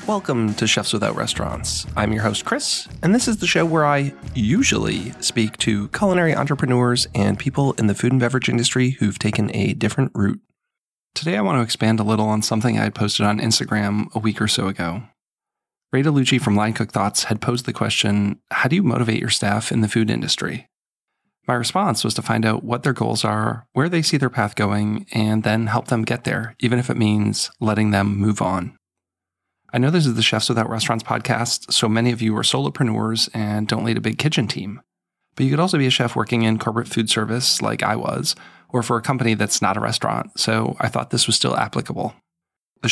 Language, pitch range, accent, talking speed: English, 110-130 Hz, American, 220 wpm